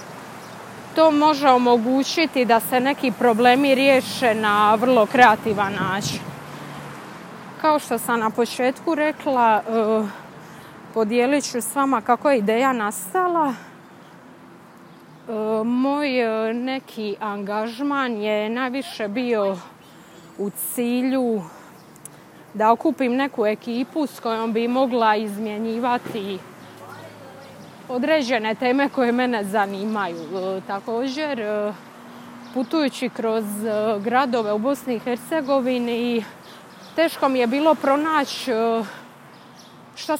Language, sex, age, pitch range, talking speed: Croatian, female, 20-39, 215-265 Hz, 105 wpm